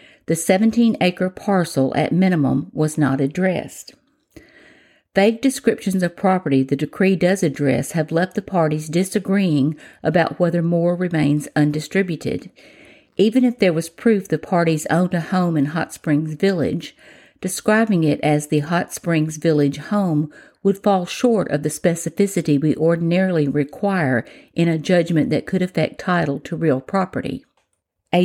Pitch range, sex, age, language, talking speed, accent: 155-195 Hz, female, 50-69, English, 145 wpm, American